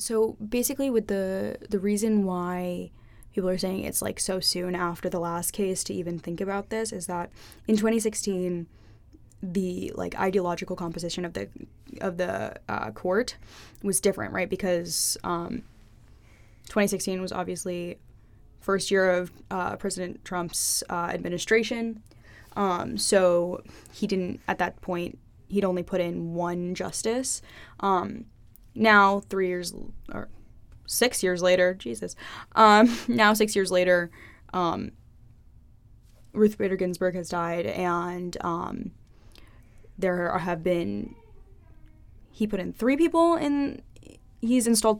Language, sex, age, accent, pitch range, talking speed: English, female, 10-29, American, 170-200 Hz, 135 wpm